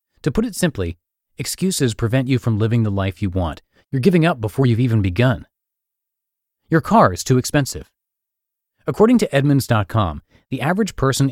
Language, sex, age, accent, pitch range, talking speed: English, male, 30-49, American, 100-135 Hz, 165 wpm